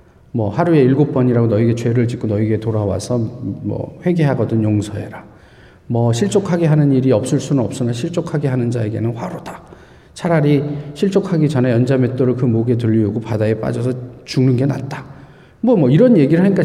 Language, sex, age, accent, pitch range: Korean, male, 40-59, native, 130-220 Hz